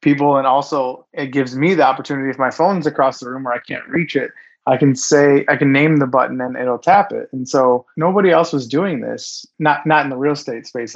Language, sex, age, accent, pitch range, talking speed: English, male, 20-39, American, 125-145 Hz, 245 wpm